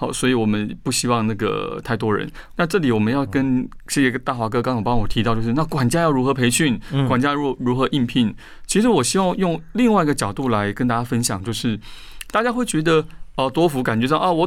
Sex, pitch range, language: male, 115-155 Hz, Chinese